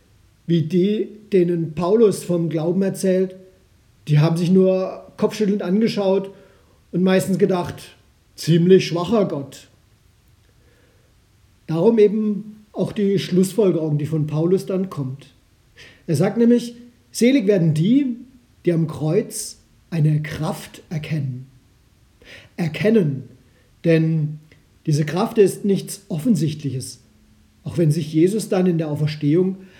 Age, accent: 50-69, German